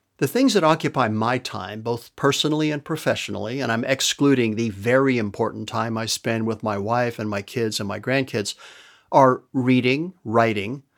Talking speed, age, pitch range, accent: 170 wpm, 60-79, 115-150 Hz, American